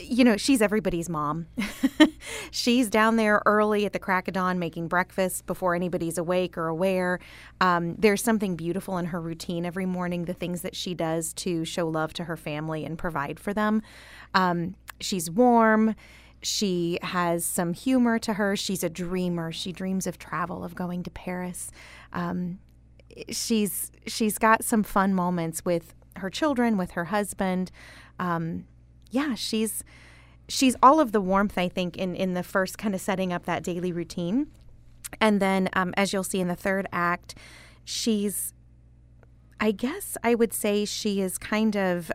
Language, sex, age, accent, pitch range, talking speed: English, female, 30-49, American, 175-210 Hz, 170 wpm